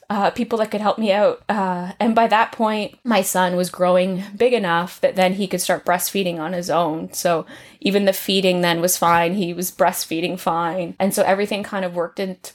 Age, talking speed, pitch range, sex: 20-39, 215 wpm, 195-245 Hz, female